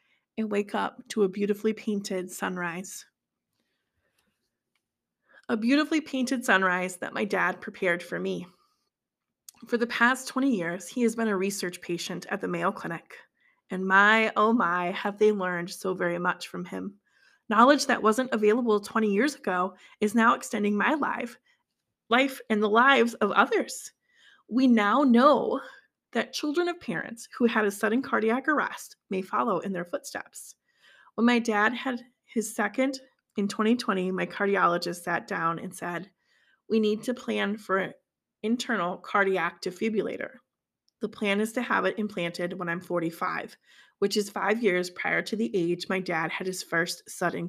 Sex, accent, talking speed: female, American, 160 wpm